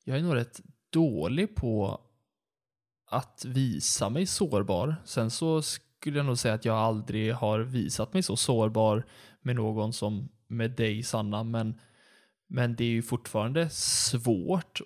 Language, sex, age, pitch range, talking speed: Swedish, male, 20-39, 110-125 Hz, 150 wpm